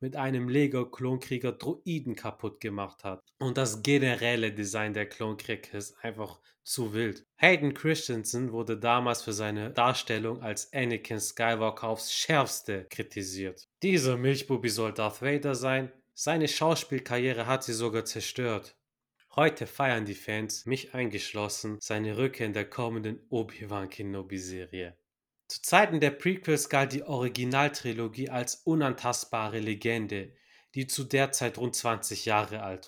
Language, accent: German, German